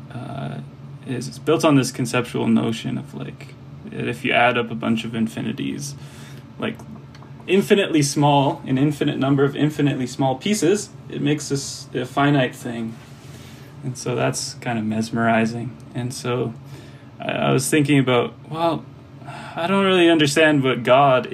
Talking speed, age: 150 wpm, 20-39